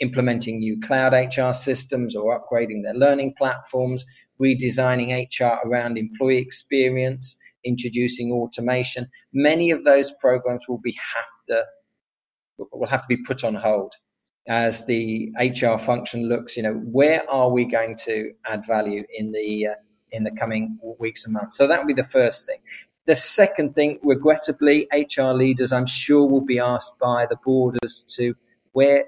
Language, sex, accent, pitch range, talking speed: English, male, British, 115-135 Hz, 160 wpm